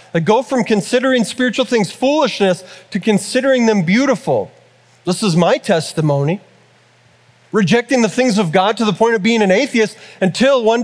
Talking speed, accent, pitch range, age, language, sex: 160 wpm, American, 165-225 Hz, 30-49, English, male